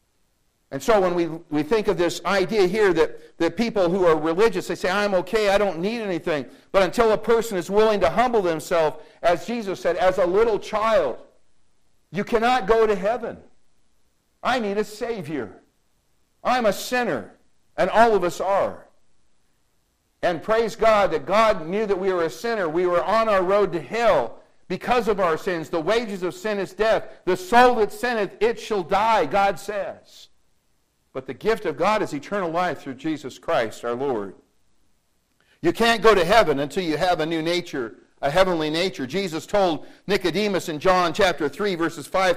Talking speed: 185 wpm